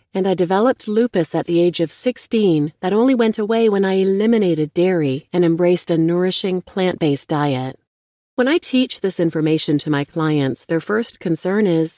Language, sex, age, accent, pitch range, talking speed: English, female, 40-59, American, 155-200 Hz, 175 wpm